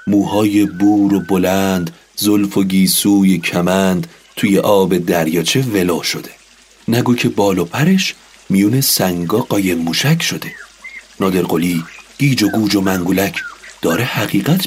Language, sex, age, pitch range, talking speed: Persian, male, 40-59, 100-130 Hz, 125 wpm